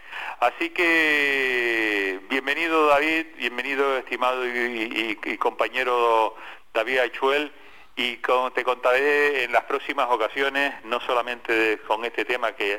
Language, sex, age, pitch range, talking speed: Spanish, male, 40-59, 110-140 Hz, 120 wpm